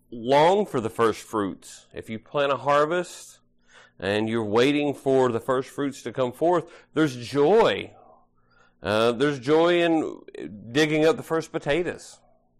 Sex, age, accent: male, 40-59, American